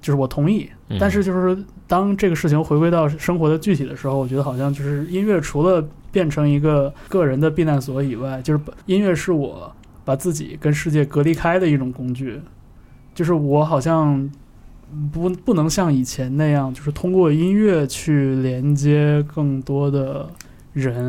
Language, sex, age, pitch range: Chinese, male, 20-39, 135-165 Hz